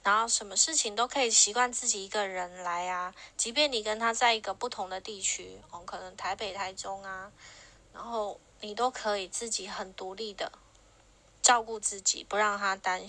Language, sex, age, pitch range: Chinese, female, 20-39, 195-230 Hz